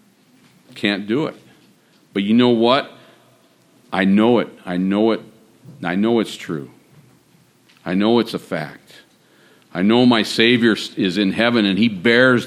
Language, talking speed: English, 155 wpm